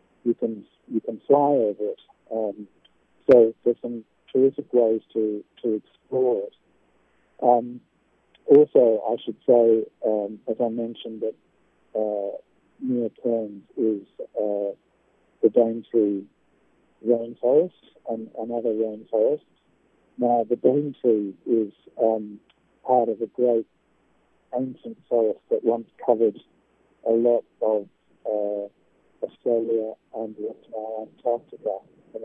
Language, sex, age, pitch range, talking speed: English, male, 50-69, 110-125 Hz, 115 wpm